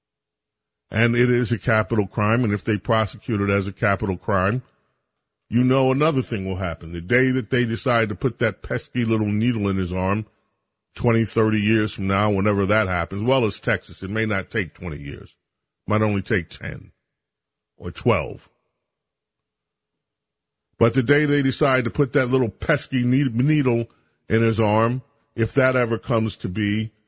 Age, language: 40-59, English